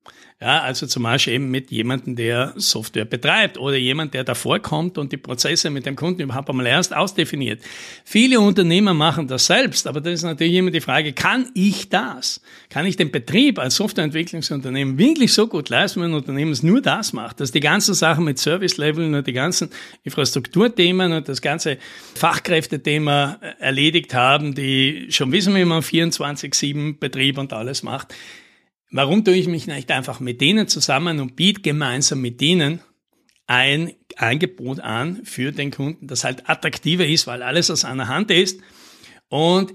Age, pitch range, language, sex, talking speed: 60-79, 135-175 Hz, German, male, 175 wpm